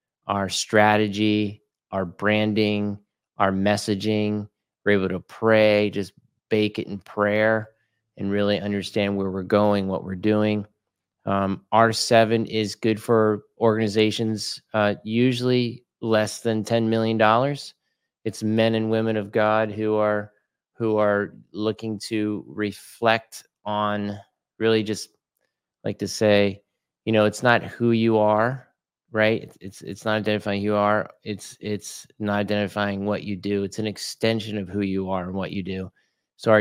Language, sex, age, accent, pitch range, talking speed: English, male, 30-49, American, 100-110 Hz, 150 wpm